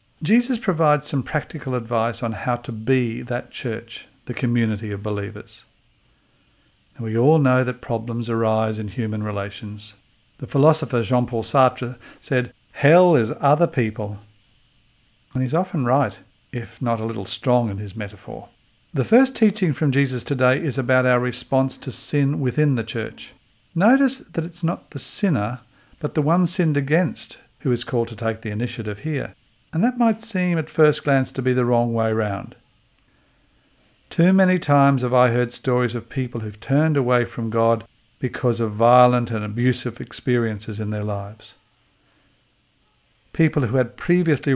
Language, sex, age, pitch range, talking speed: English, male, 50-69, 115-145 Hz, 160 wpm